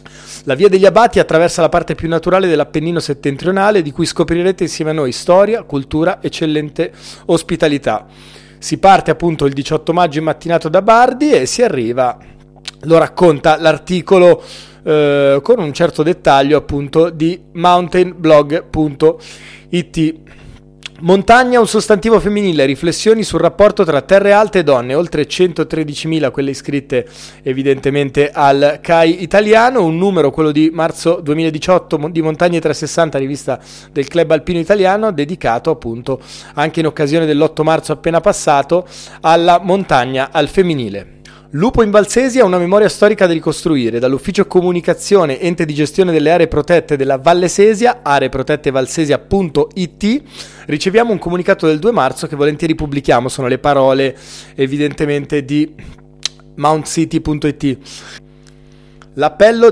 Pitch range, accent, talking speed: 145-180 Hz, native, 130 wpm